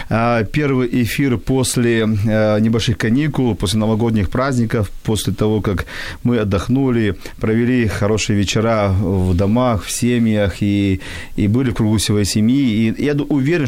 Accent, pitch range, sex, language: native, 100-120 Hz, male, Ukrainian